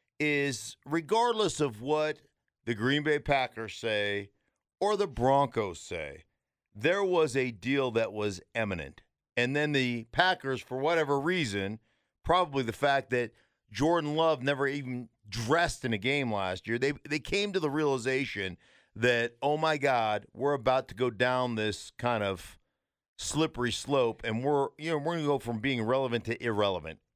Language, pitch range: English, 115-150 Hz